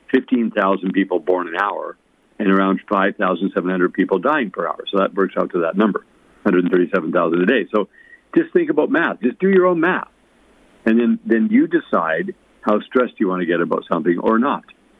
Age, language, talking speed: 60-79, English, 190 wpm